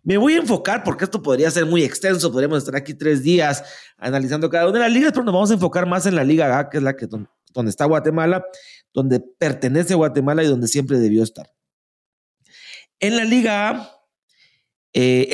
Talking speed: 200 wpm